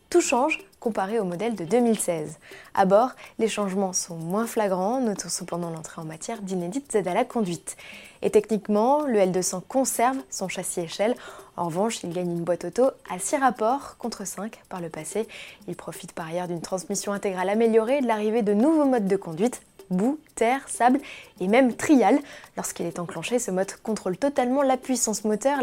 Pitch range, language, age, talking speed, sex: 185-250 Hz, French, 20-39, 185 wpm, female